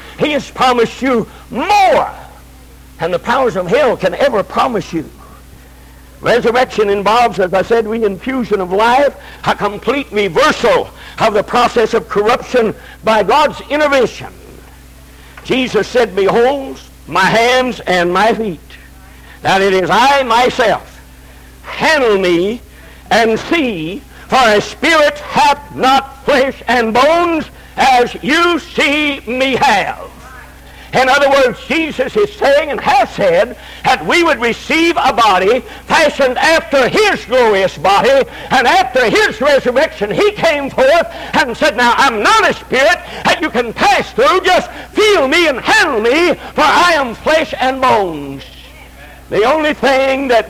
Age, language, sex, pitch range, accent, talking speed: 60-79, English, male, 195-280 Hz, American, 140 wpm